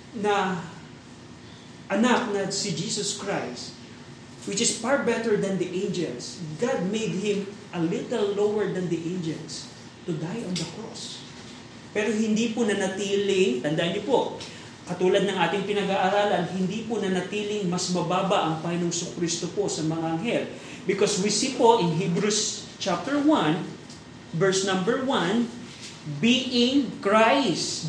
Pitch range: 180-230 Hz